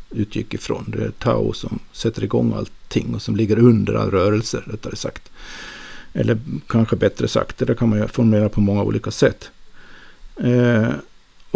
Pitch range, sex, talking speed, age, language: 110-135 Hz, male, 160 wpm, 50-69, Swedish